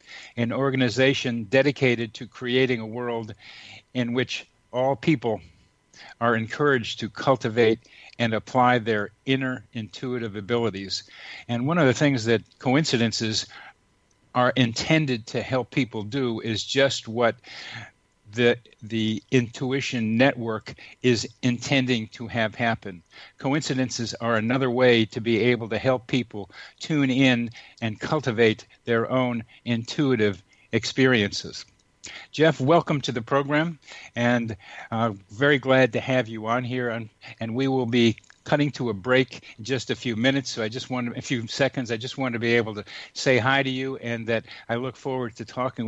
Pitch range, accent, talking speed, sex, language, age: 115-130 Hz, American, 150 wpm, male, English, 50-69